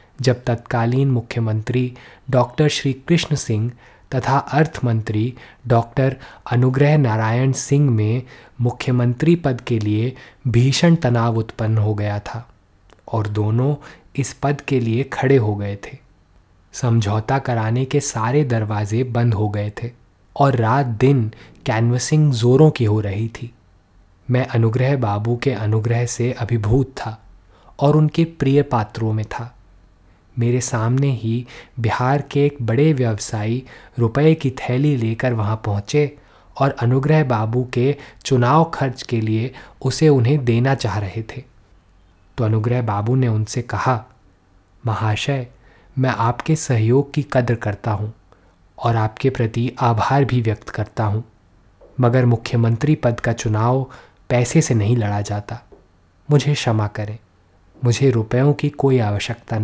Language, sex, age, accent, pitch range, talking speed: Hindi, male, 20-39, native, 110-135 Hz, 135 wpm